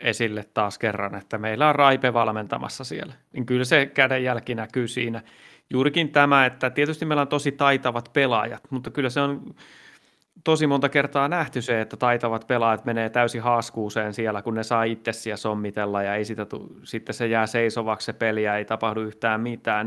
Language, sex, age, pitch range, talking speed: Finnish, male, 30-49, 110-140 Hz, 175 wpm